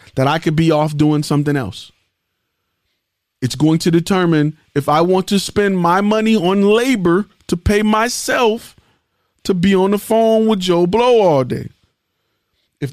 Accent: American